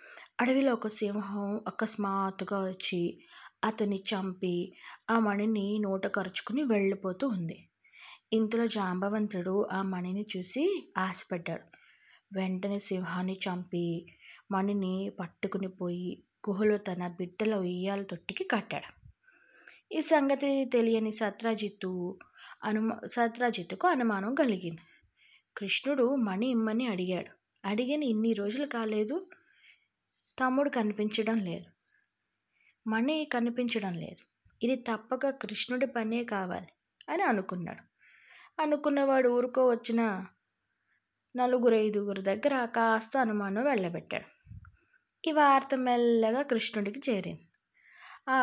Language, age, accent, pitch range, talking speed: Telugu, 20-39, native, 195-245 Hz, 90 wpm